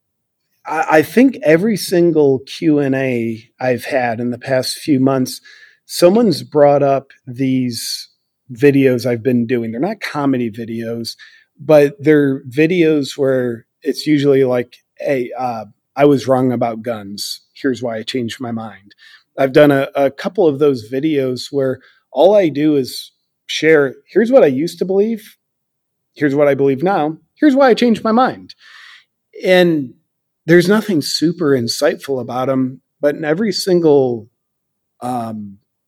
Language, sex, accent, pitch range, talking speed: English, male, American, 130-160 Hz, 145 wpm